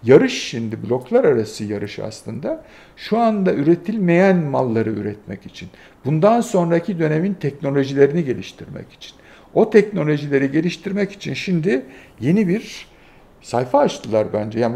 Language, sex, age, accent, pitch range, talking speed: Turkish, male, 60-79, native, 130-190 Hz, 120 wpm